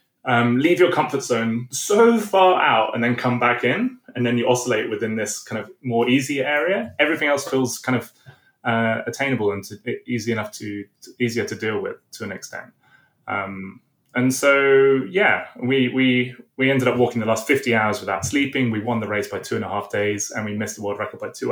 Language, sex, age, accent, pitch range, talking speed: English, male, 20-39, British, 110-140 Hz, 210 wpm